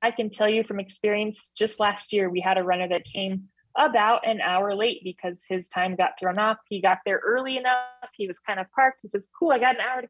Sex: female